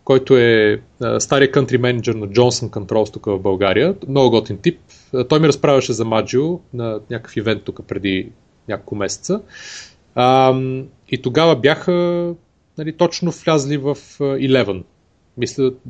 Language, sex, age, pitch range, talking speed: Bulgarian, male, 30-49, 115-150 Hz, 145 wpm